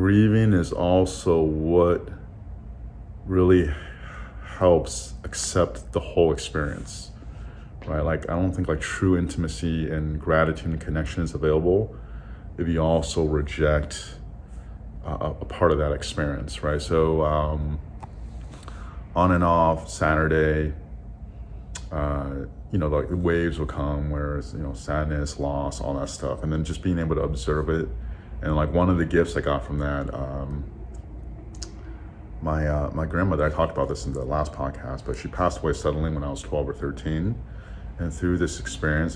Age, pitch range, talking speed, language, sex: 30-49, 75-85 Hz, 160 wpm, English, male